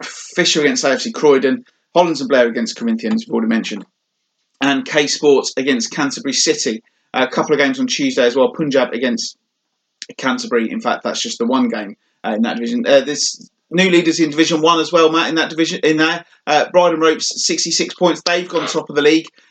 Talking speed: 205 wpm